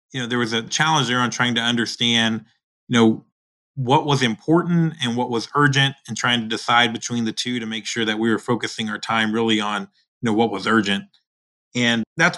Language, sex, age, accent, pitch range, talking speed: English, male, 30-49, American, 115-130 Hz, 220 wpm